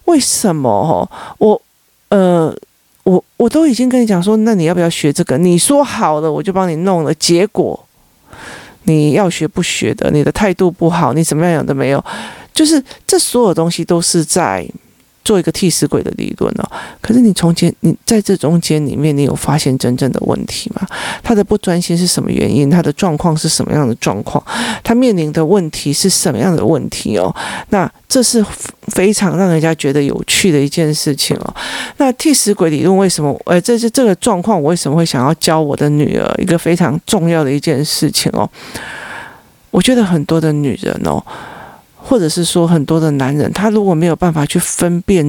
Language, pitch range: Chinese, 155-205 Hz